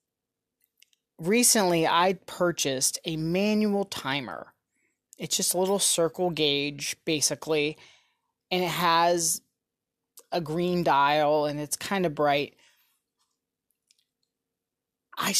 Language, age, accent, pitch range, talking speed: English, 30-49, American, 155-195 Hz, 95 wpm